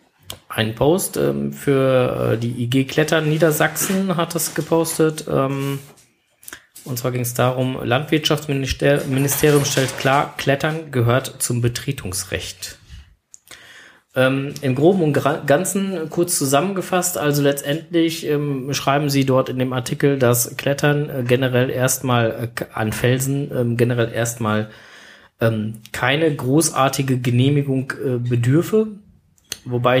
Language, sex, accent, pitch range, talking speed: German, male, German, 120-140 Hz, 115 wpm